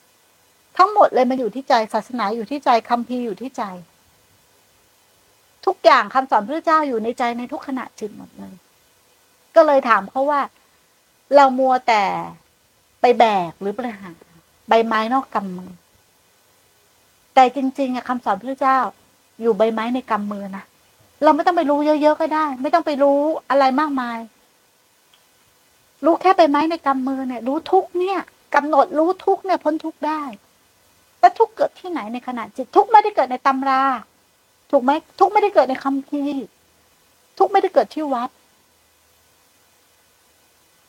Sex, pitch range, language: female, 240-310 Hz, Thai